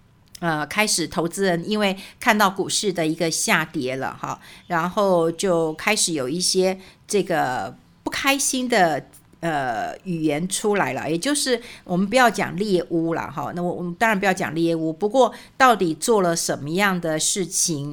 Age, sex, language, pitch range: 50-69, female, Chinese, 165-200 Hz